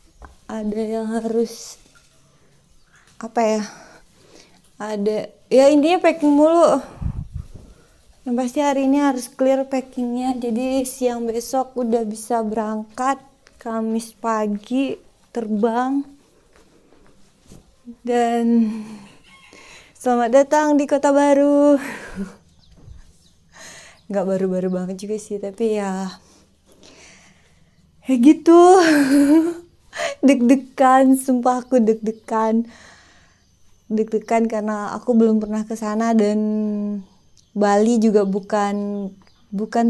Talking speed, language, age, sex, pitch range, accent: 85 wpm, Indonesian, 20-39, female, 215-255 Hz, native